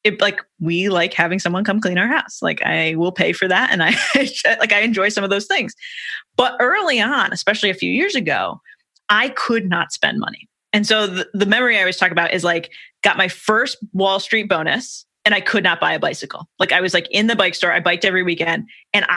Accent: American